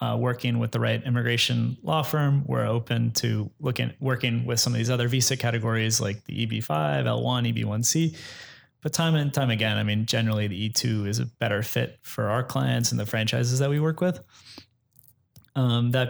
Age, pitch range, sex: 20-39, 110-130 Hz, male